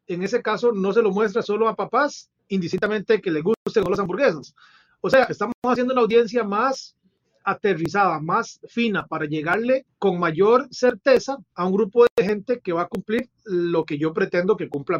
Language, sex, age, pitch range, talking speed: Spanish, male, 30-49, 175-235 Hz, 185 wpm